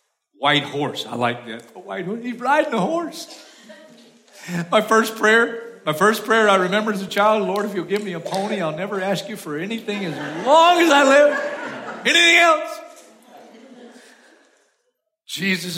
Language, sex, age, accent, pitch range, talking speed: English, male, 50-69, American, 170-230 Hz, 155 wpm